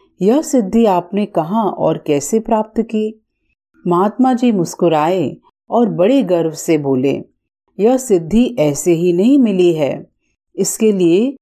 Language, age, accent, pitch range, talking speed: Hindi, 40-59, native, 160-240 Hz, 130 wpm